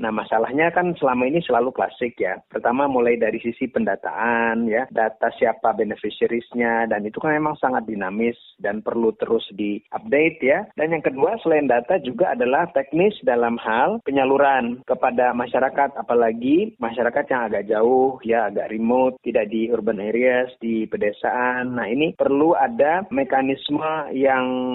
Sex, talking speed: male, 150 wpm